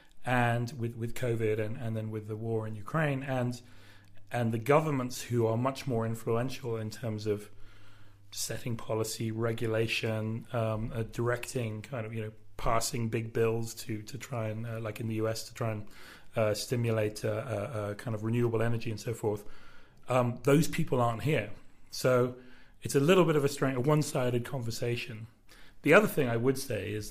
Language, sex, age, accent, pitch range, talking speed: English, male, 30-49, British, 110-125 Hz, 185 wpm